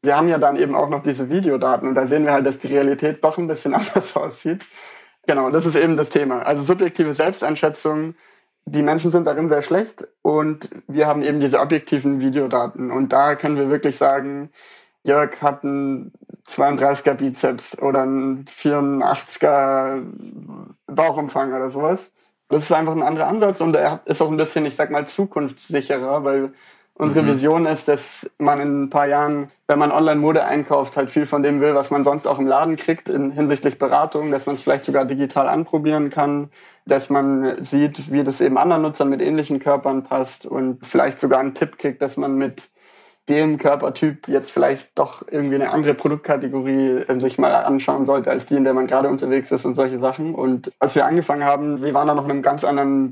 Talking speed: 195 wpm